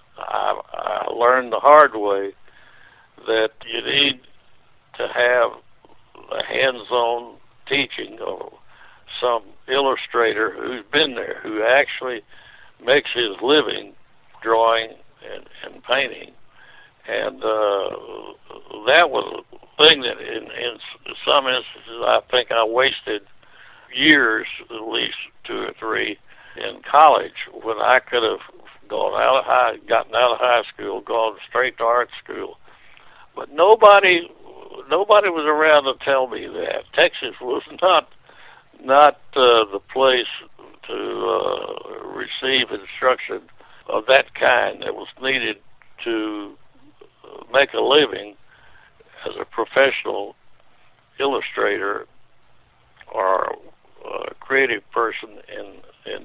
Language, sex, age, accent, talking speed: English, male, 60-79, American, 120 wpm